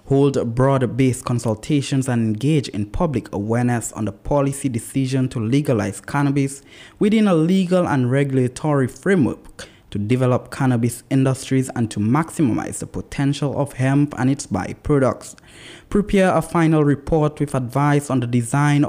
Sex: male